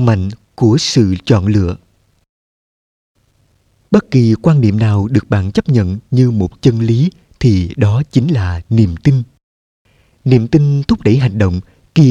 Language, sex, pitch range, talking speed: Vietnamese, male, 105-140 Hz, 155 wpm